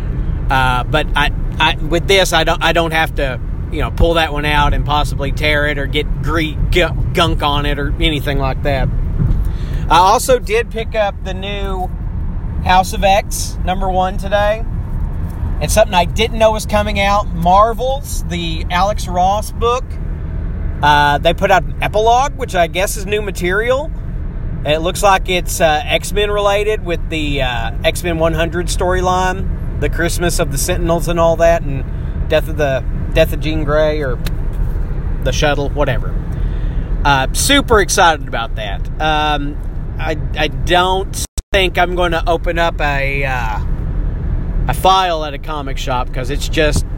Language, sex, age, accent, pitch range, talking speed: English, male, 40-59, American, 130-180 Hz, 165 wpm